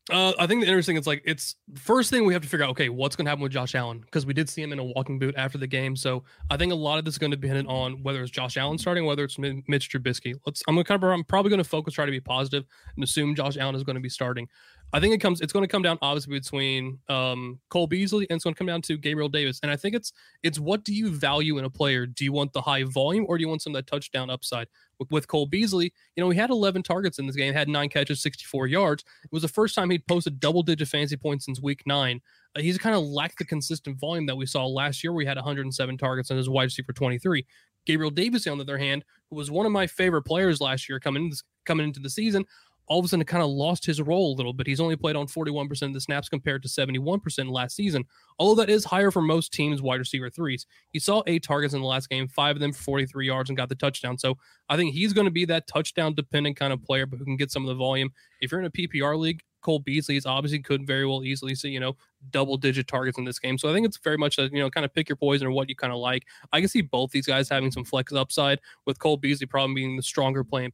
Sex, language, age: male, English, 20-39